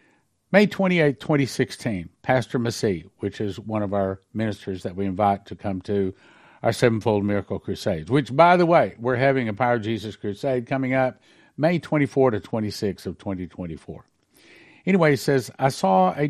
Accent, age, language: American, 50-69, English